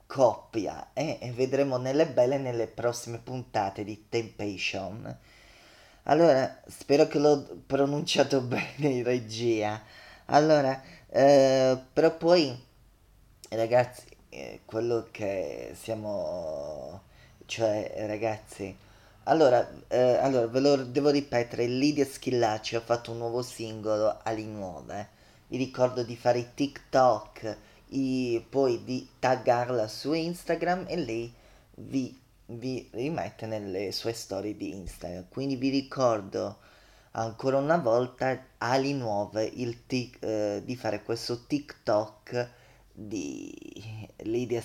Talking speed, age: 115 wpm, 20-39